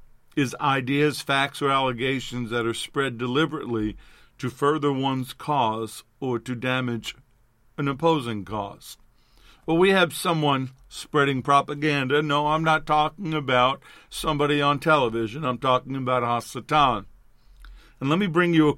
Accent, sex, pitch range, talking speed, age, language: American, male, 120-150 Hz, 135 wpm, 50-69, English